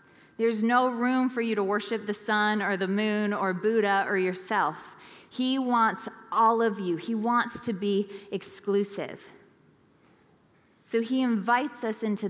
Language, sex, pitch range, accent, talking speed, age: English, female, 190-230 Hz, American, 150 wpm, 20-39